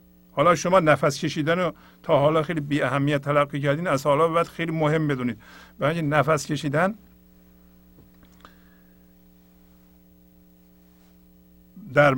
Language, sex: English, male